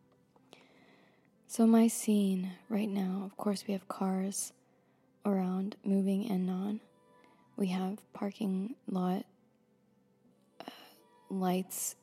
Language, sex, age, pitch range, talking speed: English, female, 20-39, 185-225 Hz, 100 wpm